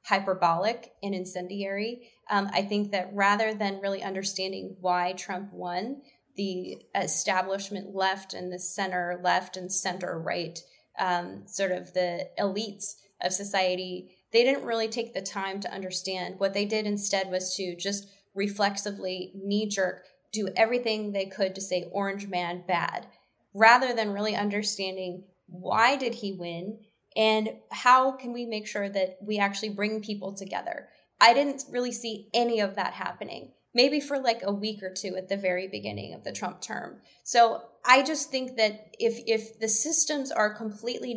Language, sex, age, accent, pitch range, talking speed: English, female, 20-39, American, 190-230 Hz, 160 wpm